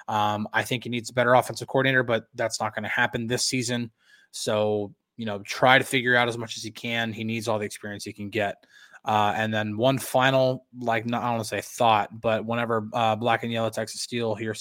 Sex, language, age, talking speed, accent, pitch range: male, English, 20-39, 240 wpm, American, 110-125 Hz